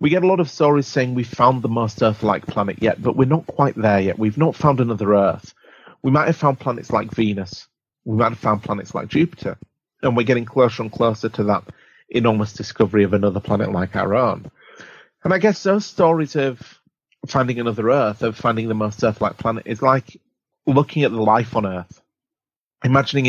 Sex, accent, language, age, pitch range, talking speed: male, British, English, 30-49, 105-135 Hz, 205 wpm